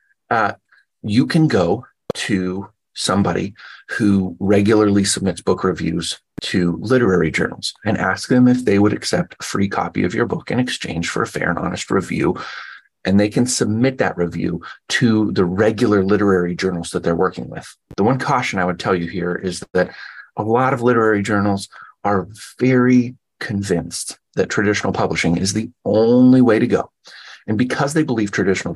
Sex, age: male, 30-49